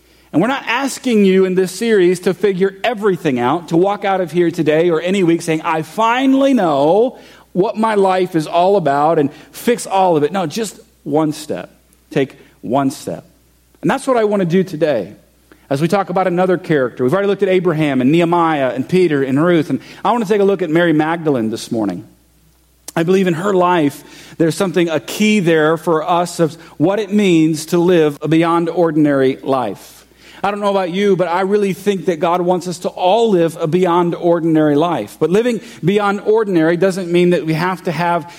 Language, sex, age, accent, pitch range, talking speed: English, male, 40-59, American, 160-190 Hz, 210 wpm